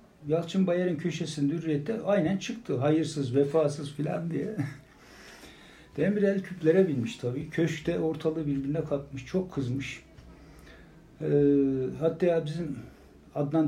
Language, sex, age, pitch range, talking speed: Turkish, male, 60-79, 150-190 Hz, 110 wpm